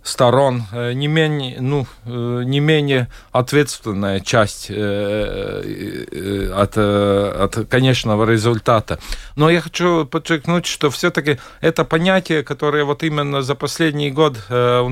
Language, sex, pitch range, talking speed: Russian, male, 115-145 Hz, 110 wpm